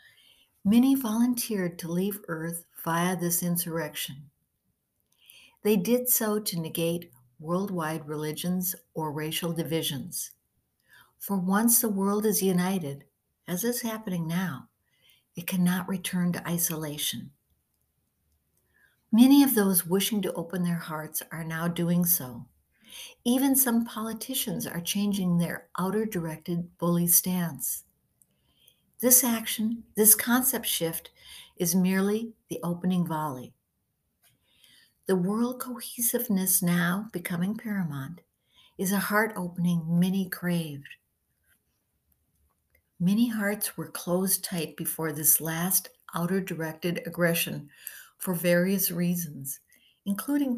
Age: 60-79